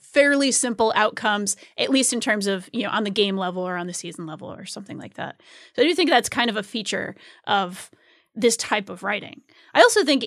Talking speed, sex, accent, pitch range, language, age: 235 wpm, female, American, 195-255 Hz, English, 20-39